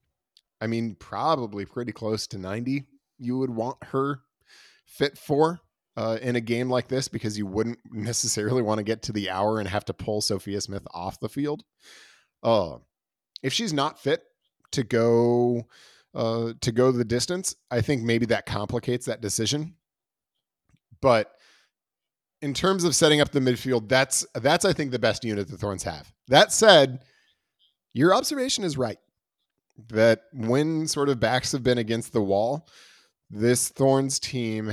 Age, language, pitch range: 30-49, English, 110-145 Hz